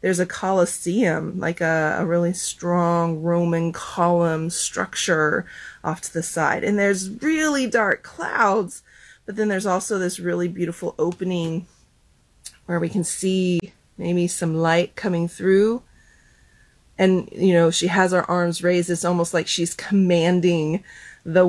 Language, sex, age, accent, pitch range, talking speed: English, female, 30-49, American, 170-210 Hz, 140 wpm